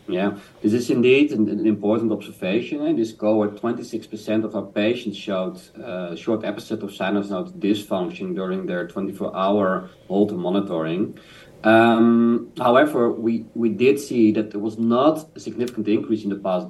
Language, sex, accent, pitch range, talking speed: English, male, Dutch, 100-115 Hz, 165 wpm